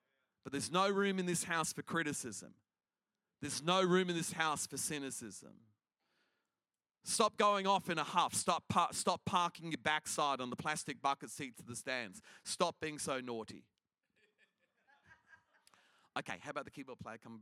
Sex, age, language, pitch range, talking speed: male, 40-59, English, 120-185 Hz, 160 wpm